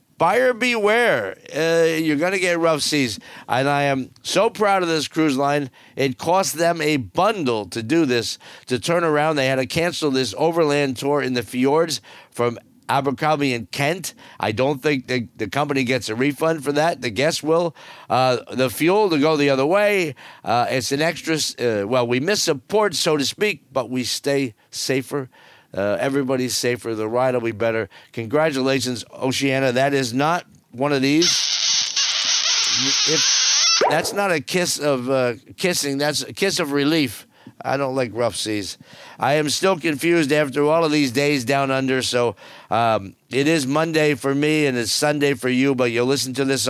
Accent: American